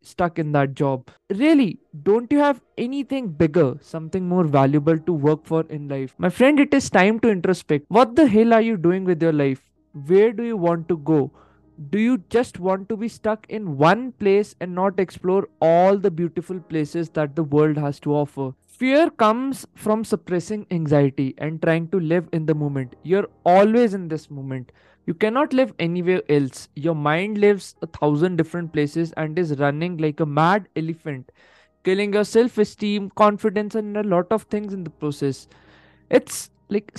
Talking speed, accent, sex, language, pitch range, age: 185 wpm, native, male, Hindi, 155-210 Hz, 20-39